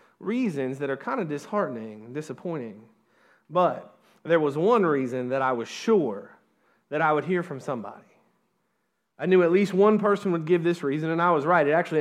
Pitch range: 160-215 Hz